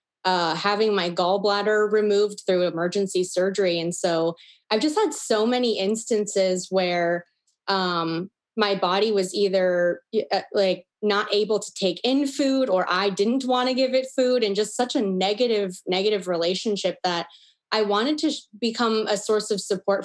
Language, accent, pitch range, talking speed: English, American, 185-220 Hz, 160 wpm